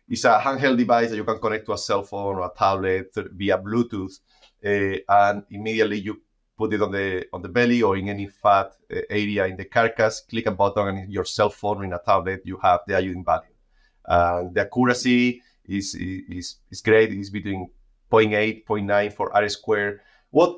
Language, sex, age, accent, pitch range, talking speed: English, male, 30-49, Spanish, 100-120 Hz, 190 wpm